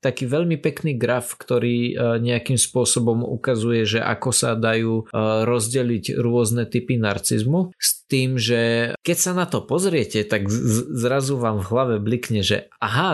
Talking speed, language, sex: 140 wpm, Slovak, male